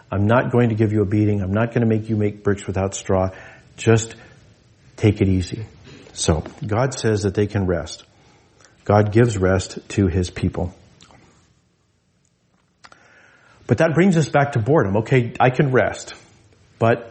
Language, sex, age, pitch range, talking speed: English, male, 40-59, 110-135 Hz, 165 wpm